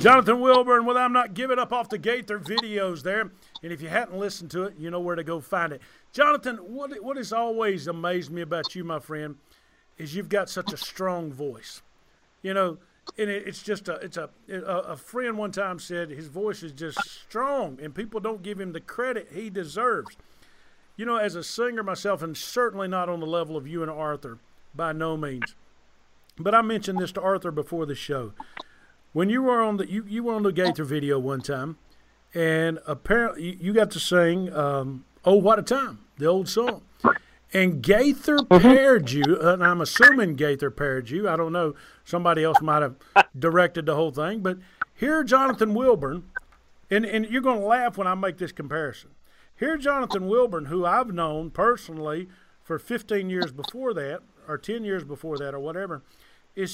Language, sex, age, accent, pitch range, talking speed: English, male, 50-69, American, 160-220 Hz, 200 wpm